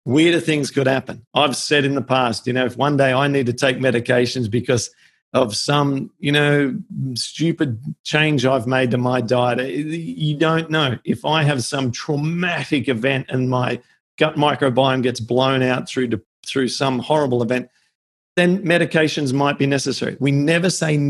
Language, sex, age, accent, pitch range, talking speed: English, male, 40-59, Australian, 115-140 Hz, 170 wpm